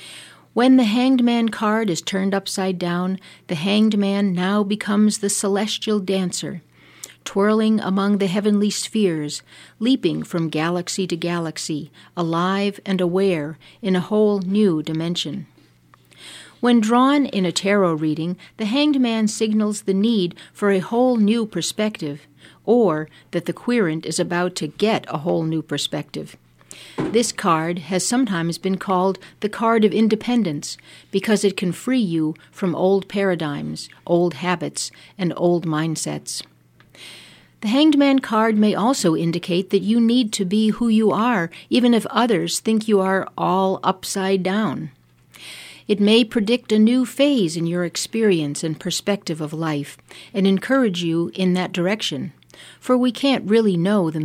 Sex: female